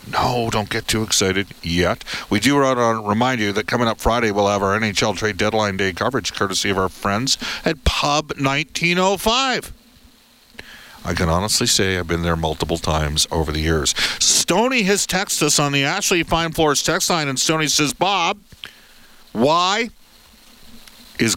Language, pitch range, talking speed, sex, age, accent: English, 100-130 Hz, 170 wpm, male, 50-69, American